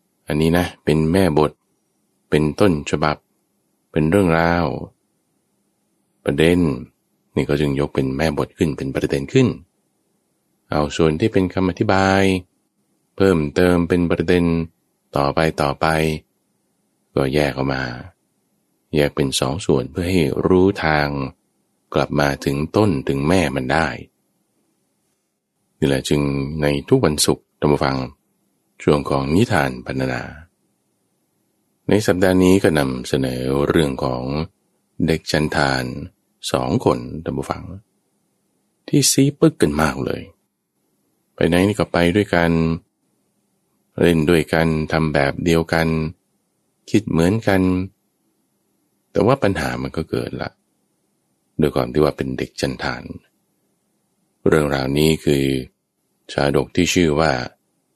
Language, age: English, 20-39